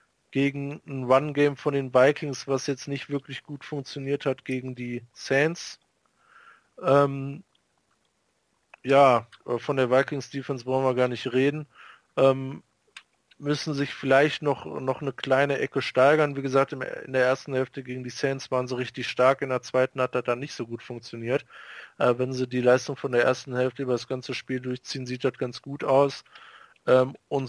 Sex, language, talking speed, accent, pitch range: male, German, 175 wpm, German, 130-145 Hz